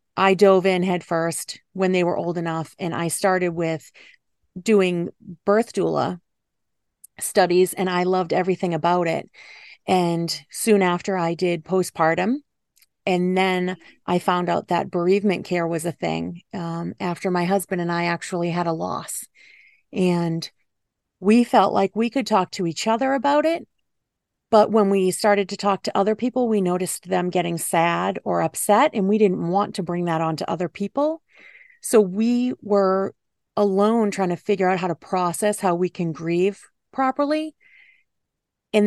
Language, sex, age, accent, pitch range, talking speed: English, female, 30-49, American, 175-210 Hz, 165 wpm